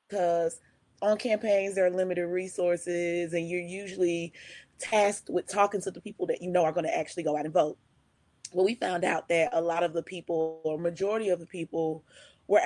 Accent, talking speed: American, 205 wpm